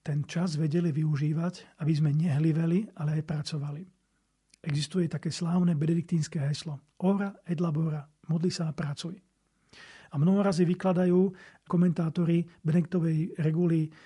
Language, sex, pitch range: Slovak, male, 155-180 Hz